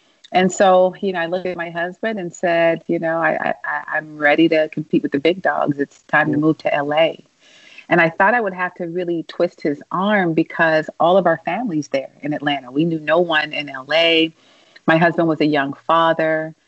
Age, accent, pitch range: 40-59, American, 150-175 Hz